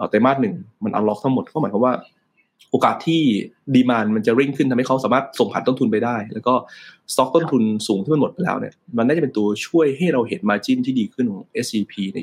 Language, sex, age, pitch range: Thai, male, 20-39, 105-140 Hz